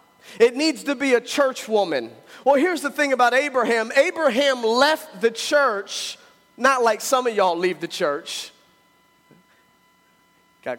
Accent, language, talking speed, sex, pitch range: American, English, 145 wpm, male, 215-270 Hz